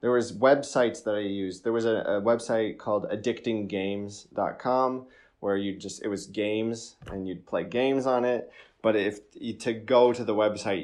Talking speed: 185 wpm